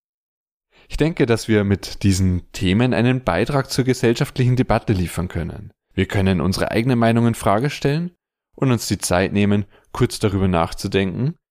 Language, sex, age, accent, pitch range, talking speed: German, male, 20-39, German, 95-120 Hz, 155 wpm